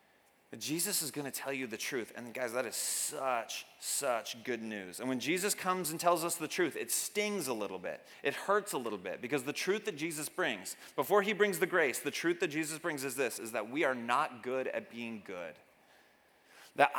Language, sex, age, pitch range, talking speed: English, male, 30-49, 140-180 Hz, 225 wpm